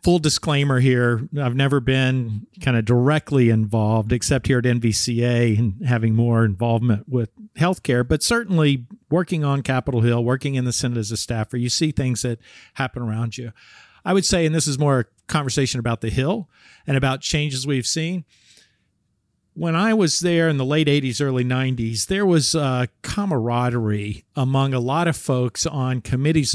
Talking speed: 175 wpm